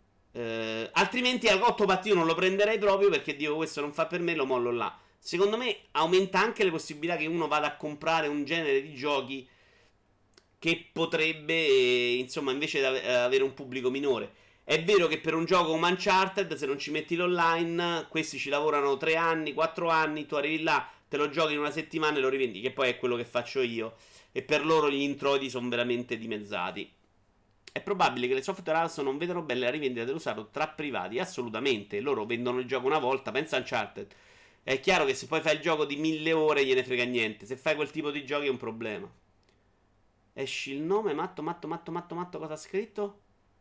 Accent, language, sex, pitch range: native, Italian, male, 125-165 Hz